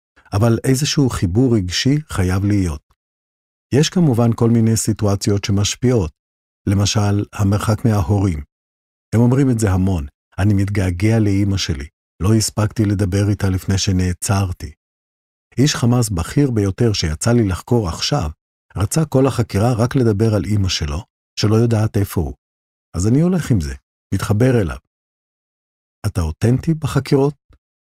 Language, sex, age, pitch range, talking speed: Hebrew, male, 50-69, 85-115 Hz, 130 wpm